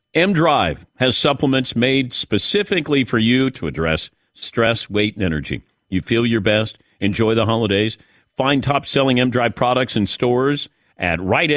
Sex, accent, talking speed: male, American, 145 wpm